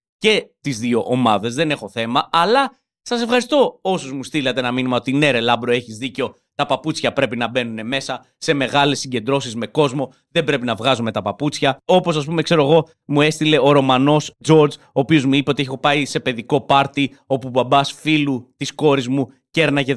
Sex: male